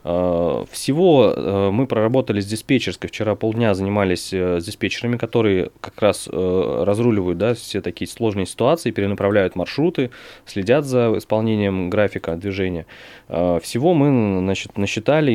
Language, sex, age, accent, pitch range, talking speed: Russian, male, 20-39, native, 95-120 Hz, 115 wpm